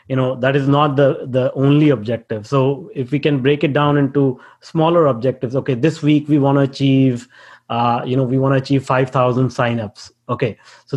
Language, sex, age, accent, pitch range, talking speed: English, male, 30-49, Indian, 130-155 Hz, 200 wpm